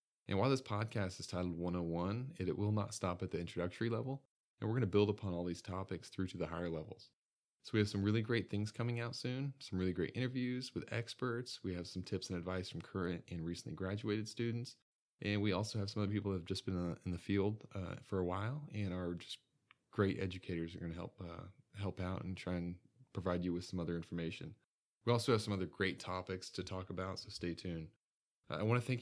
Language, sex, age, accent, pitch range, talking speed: English, male, 20-39, American, 90-115 Hz, 240 wpm